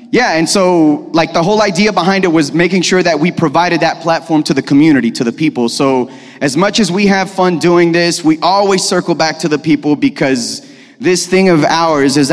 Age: 30-49